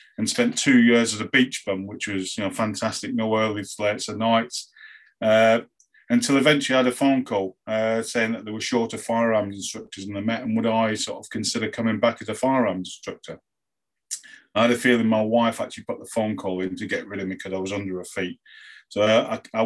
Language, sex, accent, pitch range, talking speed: English, male, British, 95-115 Hz, 225 wpm